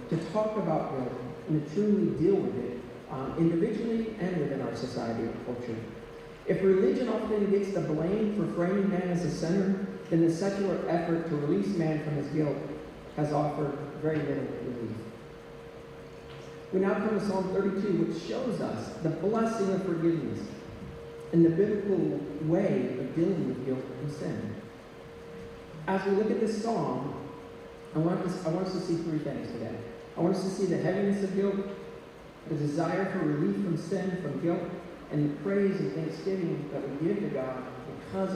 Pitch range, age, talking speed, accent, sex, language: 135-190 Hz, 40-59, 175 wpm, American, male, English